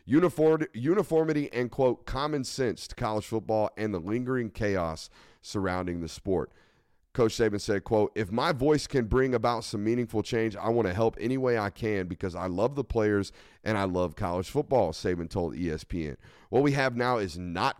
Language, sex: English, male